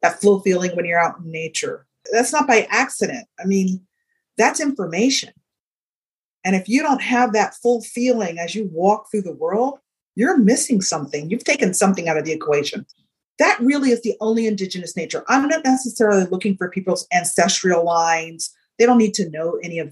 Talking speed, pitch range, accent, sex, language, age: 185 wpm, 185-245 Hz, American, female, English, 40-59